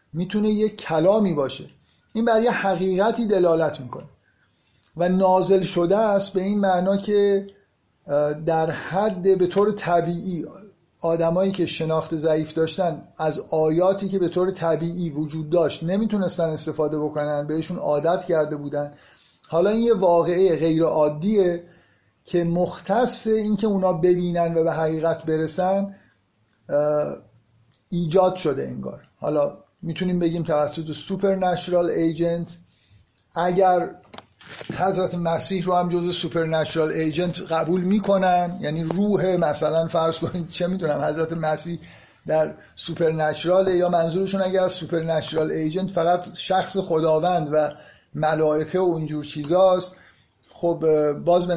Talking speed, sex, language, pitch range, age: 125 wpm, male, Persian, 155-185 Hz, 50-69